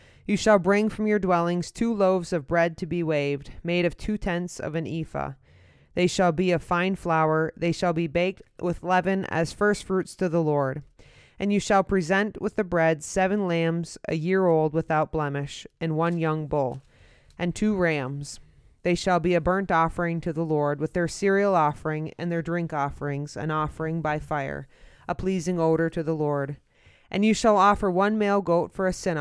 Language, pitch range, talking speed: English, 150-185 Hz, 195 wpm